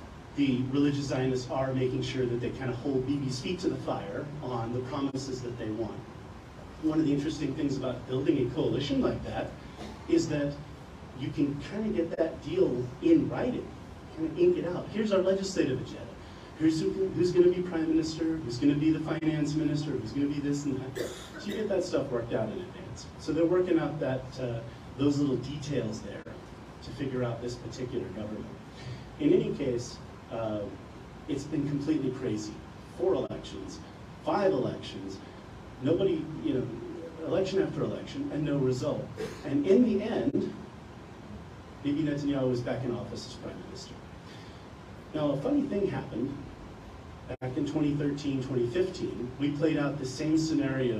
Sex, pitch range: male, 120-150 Hz